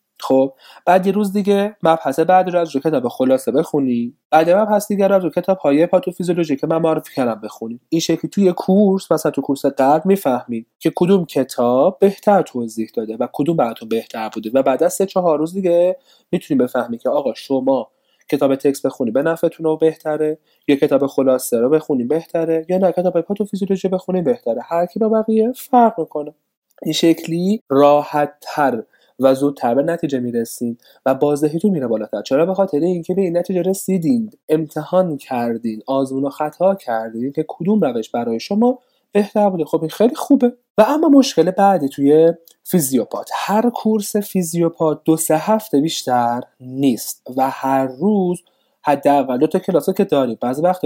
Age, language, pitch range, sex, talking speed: 30-49, Persian, 140-195 Hz, male, 170 wpm